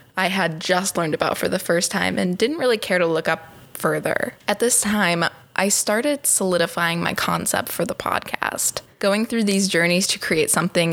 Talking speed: 190 wpm